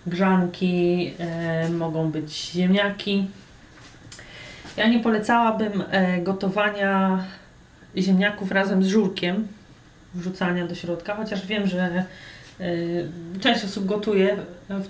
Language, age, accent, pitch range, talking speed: Polish, 30-49, native, 180-205 Hz, 90 wpm